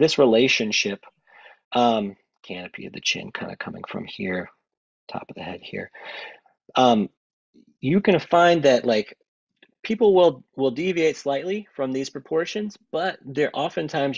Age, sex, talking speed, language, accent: 40-59, male, 150 wpm, English, American